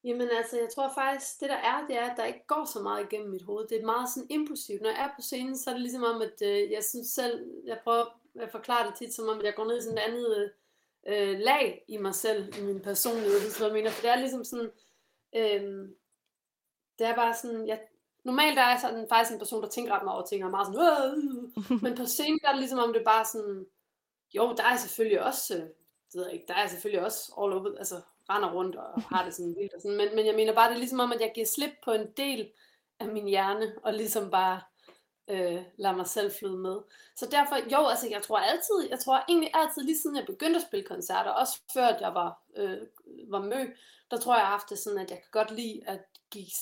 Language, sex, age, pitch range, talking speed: Danish, female, 30-49, 205-260 Hz, 255 wpm